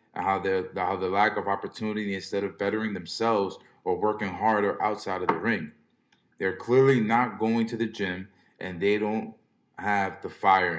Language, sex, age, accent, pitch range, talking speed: English, male, 20-39, American, 95-115 Hz, 165 wpm